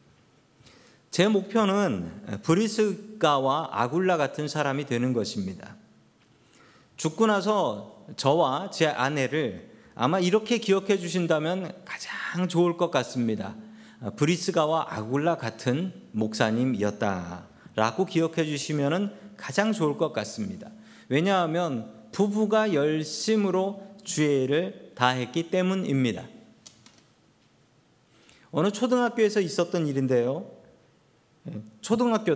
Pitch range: 125-190 Hz